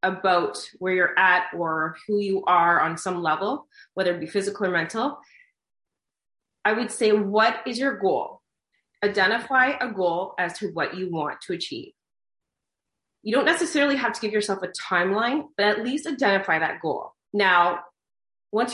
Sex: female